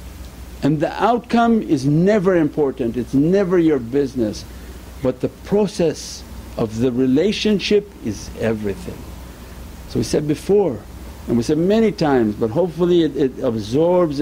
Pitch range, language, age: 110-175 Hz, English, 60-79